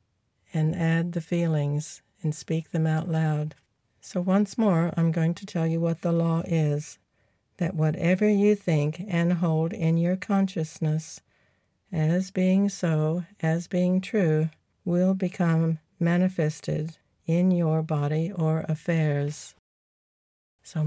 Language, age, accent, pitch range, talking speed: English, 60-79, American, 150-175 Hz, 130 wpm